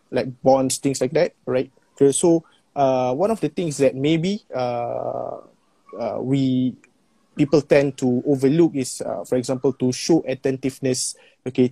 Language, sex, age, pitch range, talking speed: Malay, male, 20-39, 125-140 Hz, 155 wpm